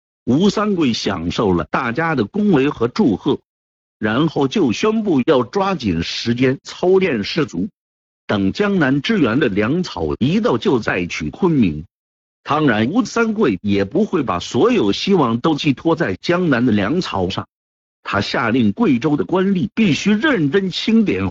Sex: male